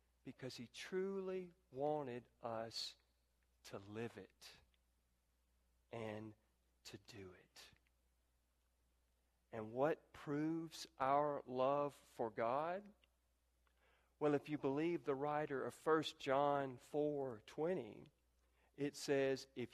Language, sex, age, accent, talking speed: English, male, 40-59, American, 95 wpm